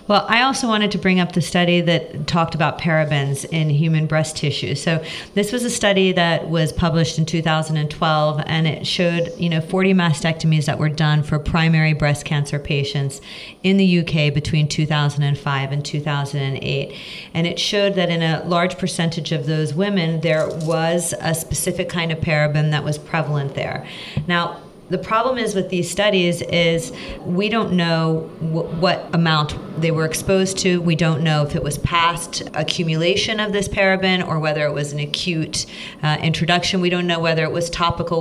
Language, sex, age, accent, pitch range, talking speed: English, female, 40-59, American, 155-180 Hz, 180 wpm